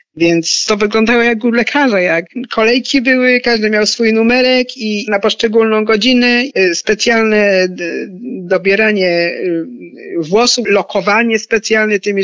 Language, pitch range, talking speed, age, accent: Polish, 185-220 Hz, 115 wpm, 50-69, native